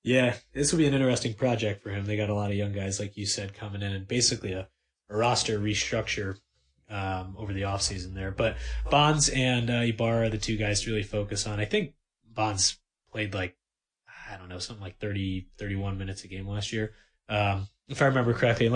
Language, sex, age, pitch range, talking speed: English, male, 20-39, 100-115 Hz, 220 wpm